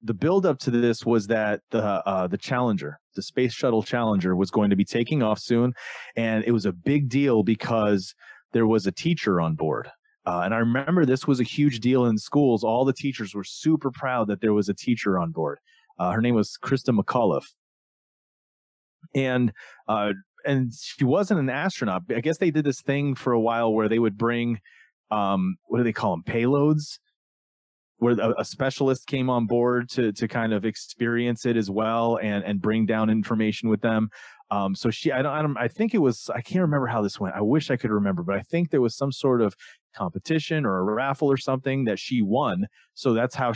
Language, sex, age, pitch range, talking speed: English, male, 30-49, 110-140 Hz, 210 wpm